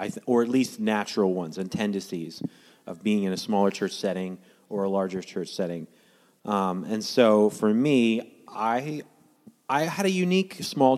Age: 30-49